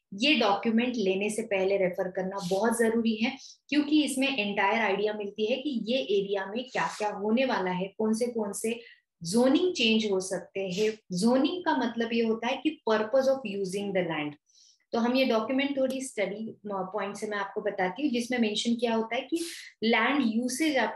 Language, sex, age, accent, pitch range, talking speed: Hindi, female, 20-39, native, 195-250 Hz, 195 wpm